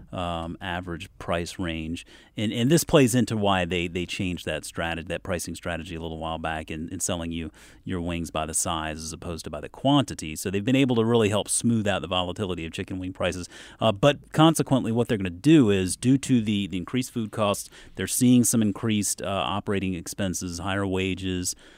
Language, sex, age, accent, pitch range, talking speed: English, male, 30-49, American, 85-105 Hz, 215 wpm